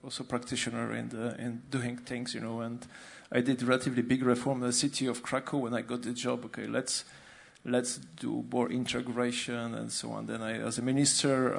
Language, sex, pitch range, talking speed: English, male, 120-135 Hz, 200 wpm